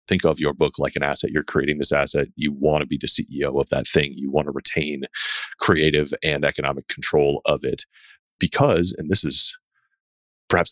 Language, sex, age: English, male, 30-49